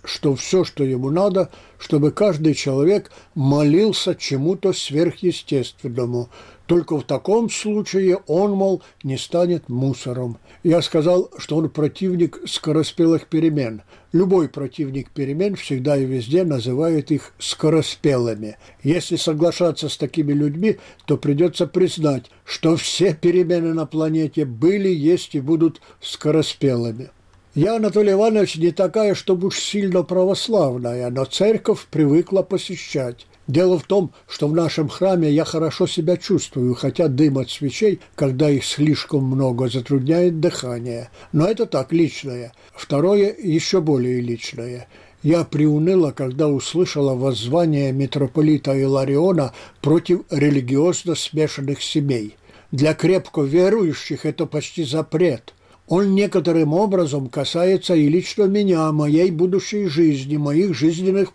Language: Russian